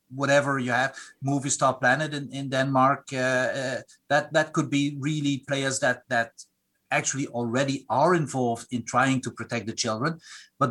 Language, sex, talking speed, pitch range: Danish, male, 170 wpm, 120-145 Hz